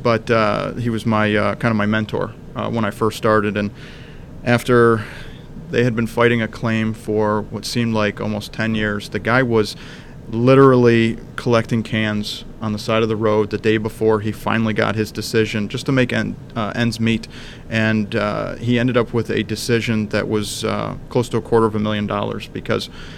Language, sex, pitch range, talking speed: English, male, 105-120 Hz, 195 wpm